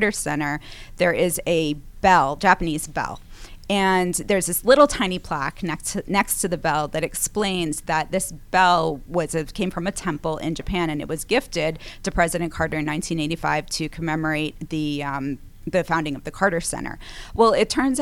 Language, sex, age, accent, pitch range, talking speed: English, female, 20-39, American, 155-190 Hz, 180 wpm